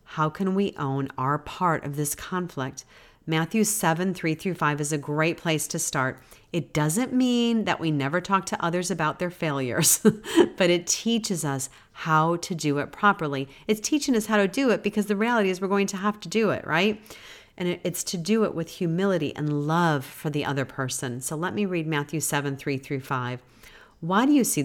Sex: female